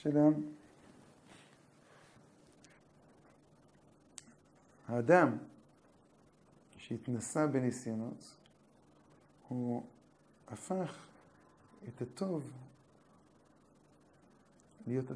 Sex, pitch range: male, 115-150 Hz